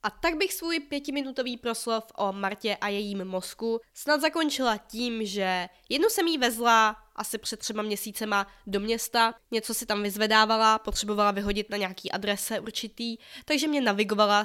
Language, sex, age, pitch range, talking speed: Czech, female, 20-39, 205-255 Hz, 160 wpm